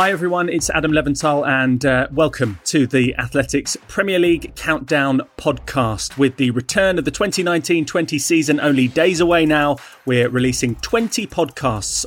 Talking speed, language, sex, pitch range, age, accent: 150 wpm, English, male, 125-155 Hz, 30-49, British